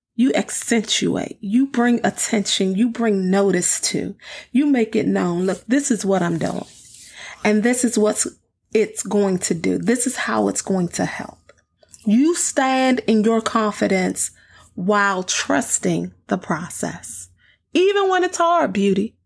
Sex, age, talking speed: female, 30-49, 150 wpm